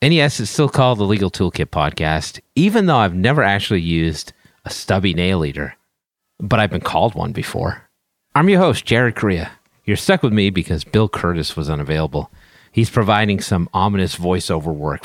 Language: English